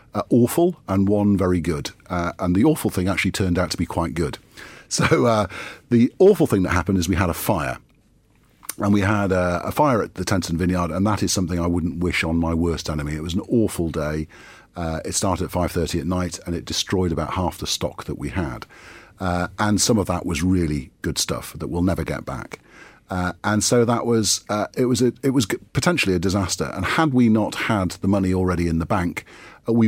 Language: English